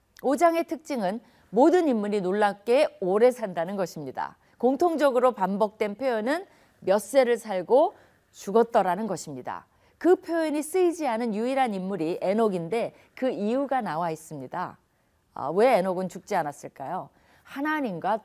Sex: female